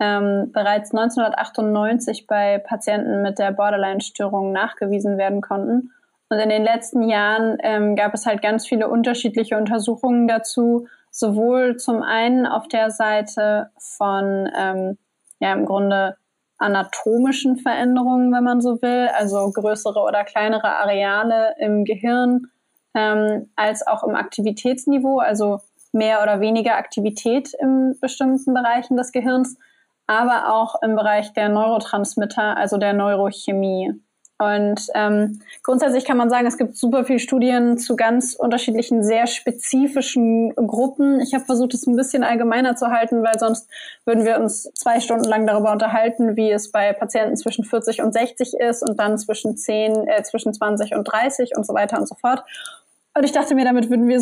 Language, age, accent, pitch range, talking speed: German, 20-39, German, 210-250 Hz, 155 wpm